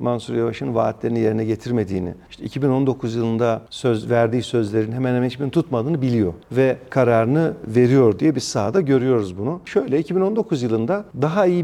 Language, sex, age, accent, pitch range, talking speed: Turkish, male, 50-69, native, 120-170 Hz, 150 wpm